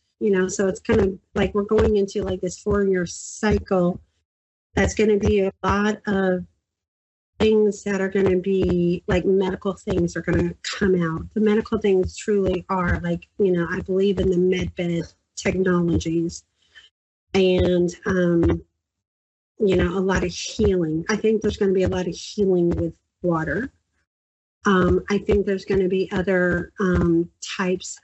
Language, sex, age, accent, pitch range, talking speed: English, female, 40-59, American, 175-205 Hz, 170 wpm